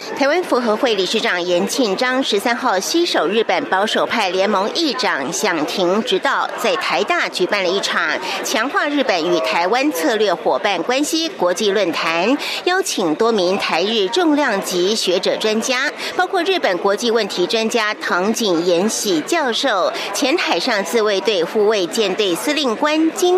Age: 60-79